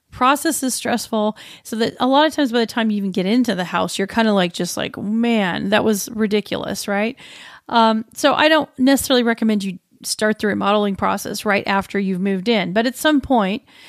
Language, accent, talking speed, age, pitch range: English, American, 210 wpm, 40-59, 200-250 Hz